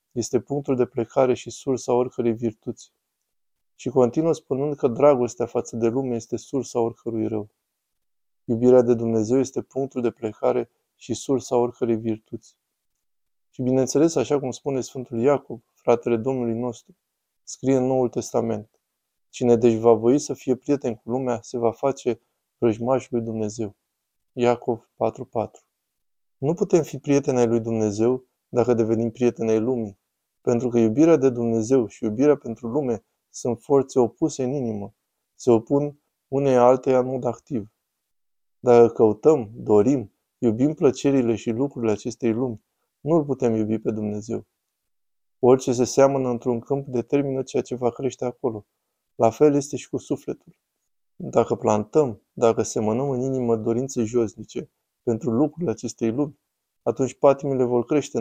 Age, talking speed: 20-39, 145 wpm